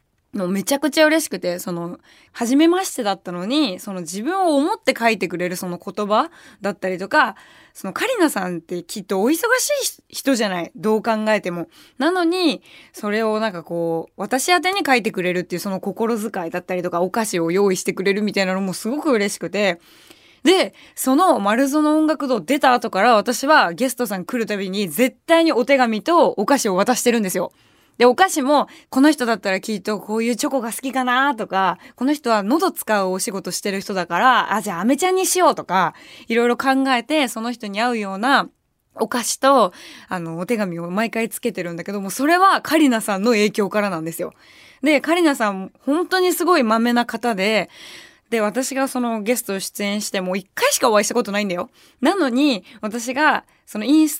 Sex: female